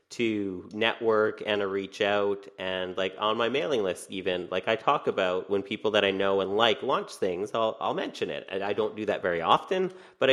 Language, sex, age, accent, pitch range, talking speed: English, male, 30-49, American, 100-140 Hz, 220 wpm